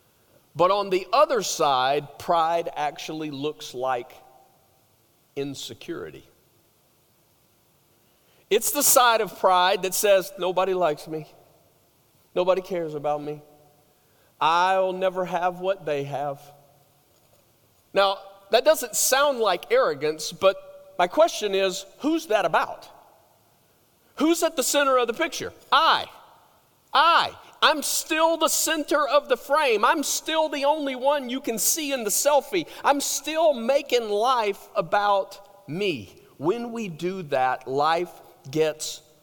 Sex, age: male, 40-59